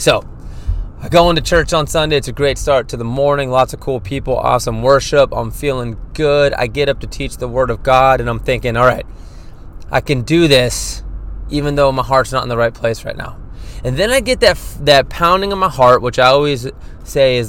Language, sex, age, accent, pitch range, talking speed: English, male, 20-39, American, 115-135 Hz, 230 wpm